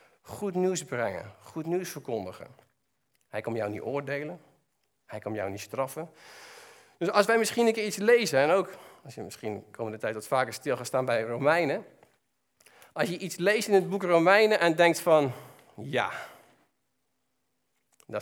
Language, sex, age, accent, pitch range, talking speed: Dutch, male, 50-69, Dutch, 135-200 Hz, 170 wpm